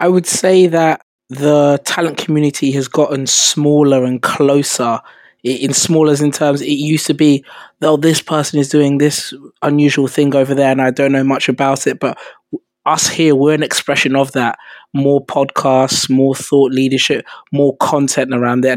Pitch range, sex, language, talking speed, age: 130-145 Hz, male, English, 175 wpm, 20-39